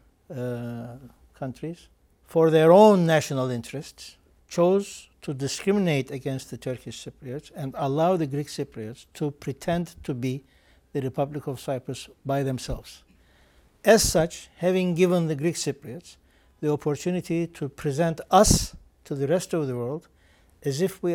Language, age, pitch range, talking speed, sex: English, 60-79, 125-160 Hz, 140 wpm, male